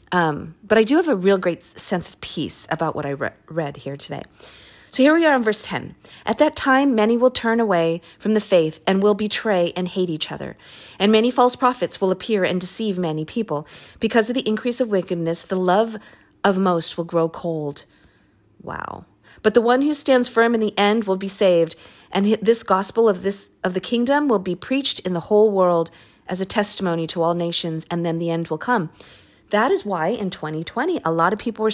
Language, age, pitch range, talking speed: English, 40-59, 170-225 Hz, 215 wpm